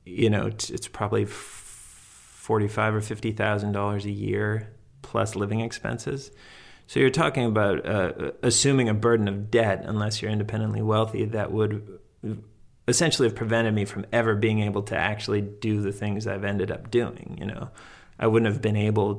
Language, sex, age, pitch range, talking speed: English, male, 30-49, 100-110 Hz, 165 wpm